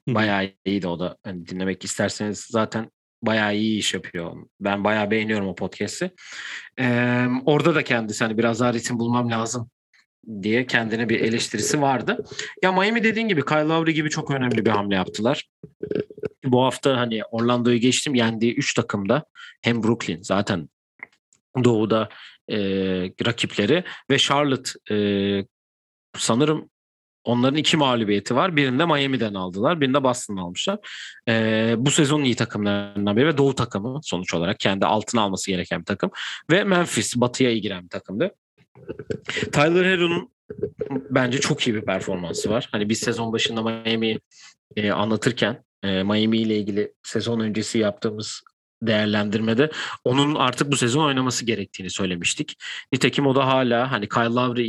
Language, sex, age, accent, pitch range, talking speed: Turkish, male, 40-59, native, 105-130 Hz, 145 wpm